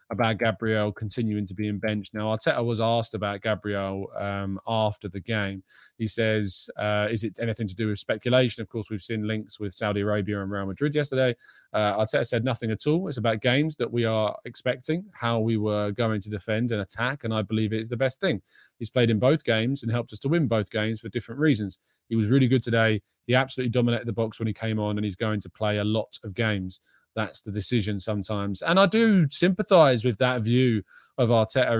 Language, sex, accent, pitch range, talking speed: English, male, British, 105-125 Hz, 225 wpm